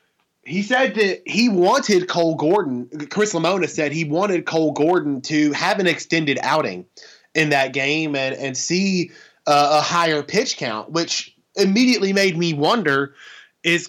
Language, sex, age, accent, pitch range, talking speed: English, male, 20-39, American, 140-175 Hz, 155 wpm